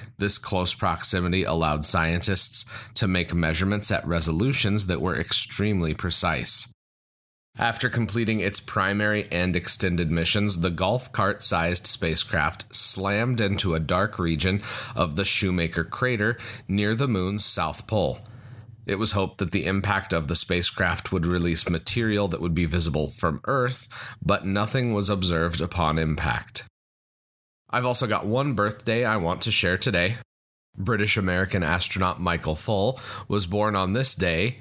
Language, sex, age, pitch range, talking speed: English, male, 30-49, 85-110 Hz, 140 wpm